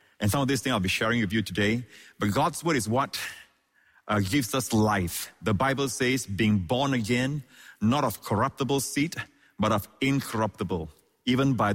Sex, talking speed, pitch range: male, 180 wpm, 105-145 Hz